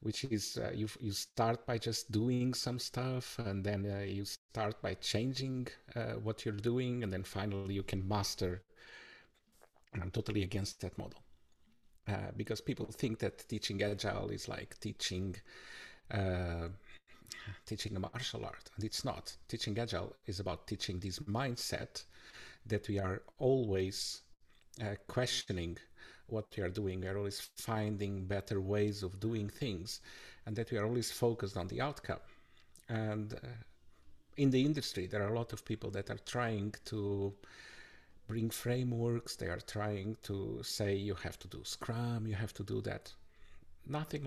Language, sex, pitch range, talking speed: English, male, 95-115 Hz, 165 wpm